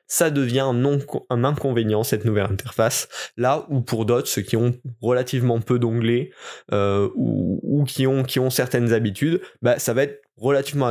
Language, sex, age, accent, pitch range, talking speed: French, male, 20-39, French, 120-155 Hz, 170 wpm